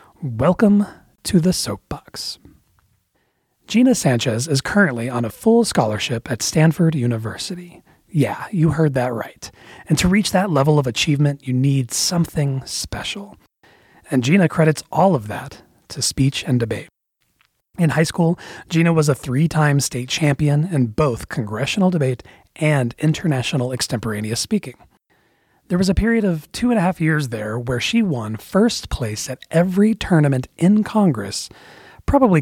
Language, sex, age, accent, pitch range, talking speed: English, male, 30-49, American, 125-175 Hz, 150 wpm